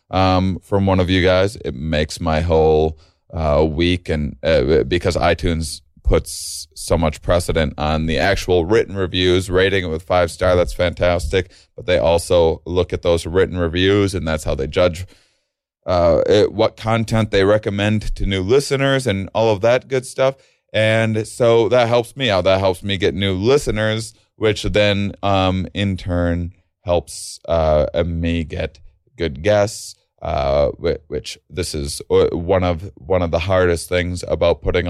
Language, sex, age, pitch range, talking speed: English, male, 30-49, 85-100 Hz, 165 wpm